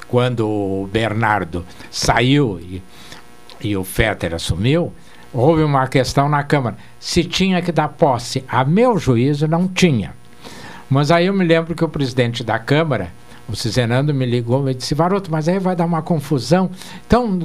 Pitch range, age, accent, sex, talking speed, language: 110-180 Hz, 60-79, Brazilian, male, 165 wpm, Portuguese